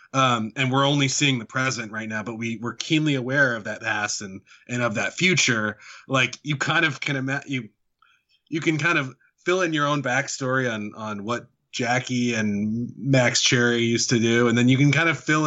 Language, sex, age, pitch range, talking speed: English, male, 20-39, 115-140 Hz, 215 wpm